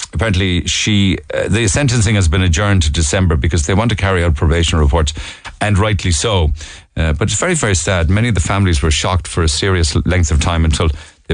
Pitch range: 85-110 Hz